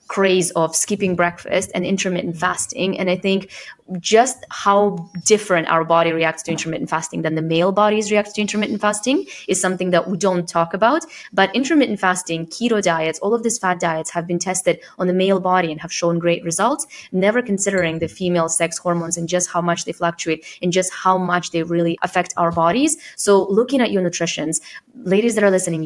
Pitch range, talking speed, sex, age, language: 165-195 Hz, 200 wpm, female, 20-39, English